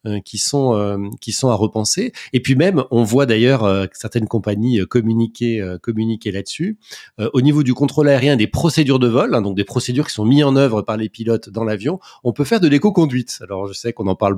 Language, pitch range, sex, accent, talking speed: French, 100-130 Hz, male, French, 240 wpm